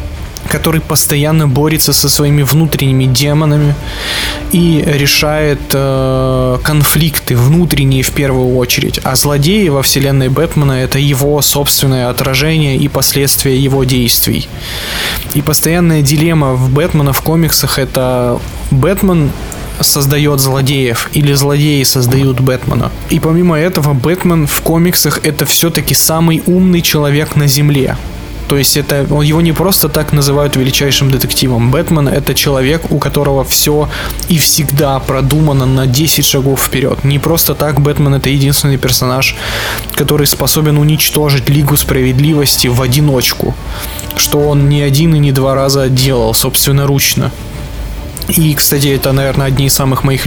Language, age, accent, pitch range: Russian, 20-39, native, 130-150 Hz